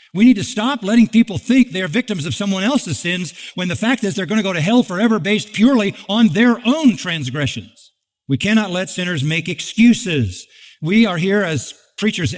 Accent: American